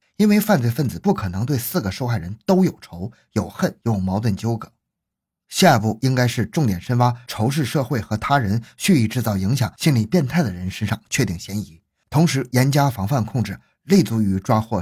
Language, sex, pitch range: Chinese, male, 105-150 Hz